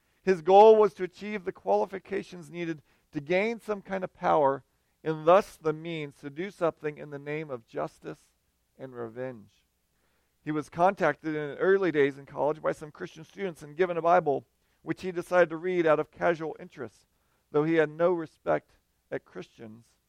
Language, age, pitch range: English, 40-59, 140-185 Hz